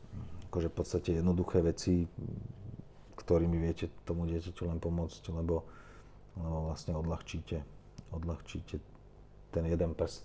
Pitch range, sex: 85-95 Hz, male